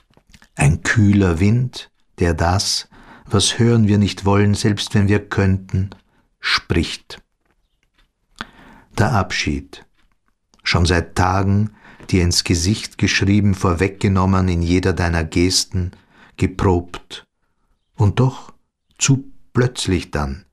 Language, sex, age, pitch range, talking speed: German, male, 50-69, 85-105 Hz, 100 wpm